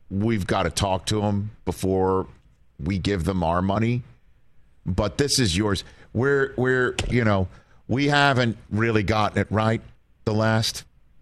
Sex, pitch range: male, 95-115 Hz